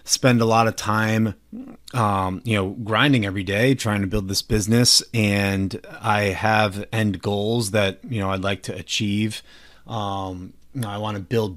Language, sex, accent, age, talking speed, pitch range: English, male, American, 30-49, 170 wpm, 100-115 Hz